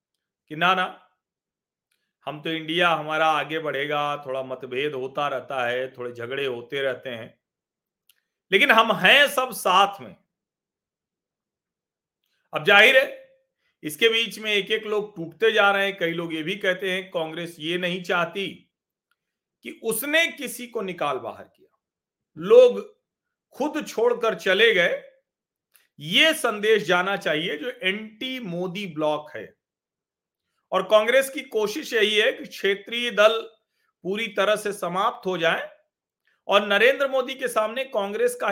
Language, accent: Hindi, native